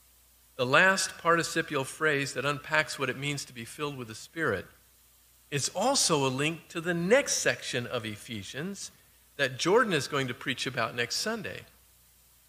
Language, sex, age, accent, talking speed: English, male, 50-69, American, 165 wpm